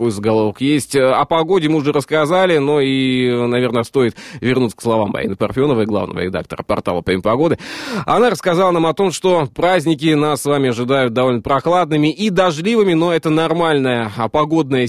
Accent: native